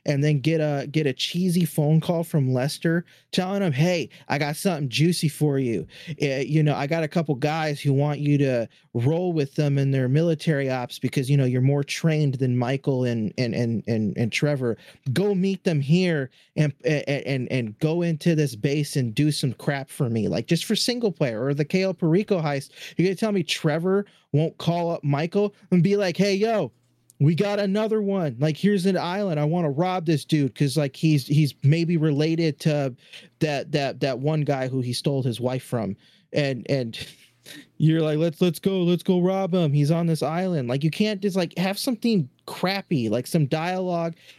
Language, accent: English, American